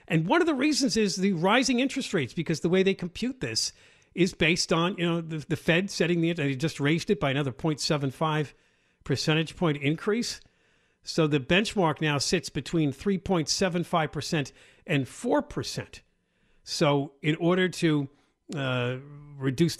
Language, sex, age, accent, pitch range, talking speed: English, male, 50-69, American, 135-180 Hz, 160 wpm